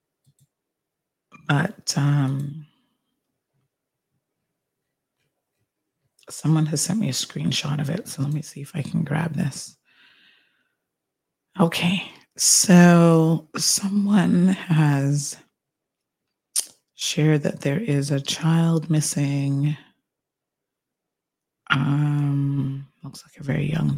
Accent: American